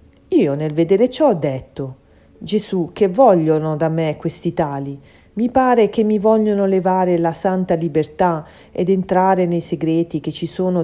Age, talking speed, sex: 40-59, 160 wpm, female